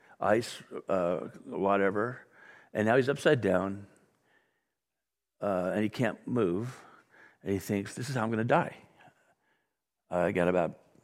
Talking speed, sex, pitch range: 145 wpm, male, 95-125 Hz